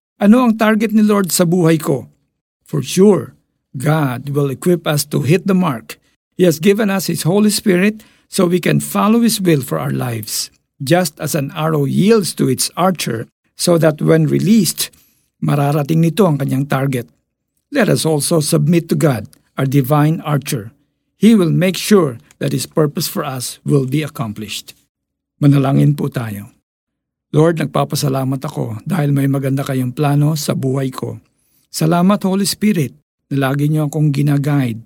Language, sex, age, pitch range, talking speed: Filipino, male, 50-69, 135-175 Hz, 160 wpm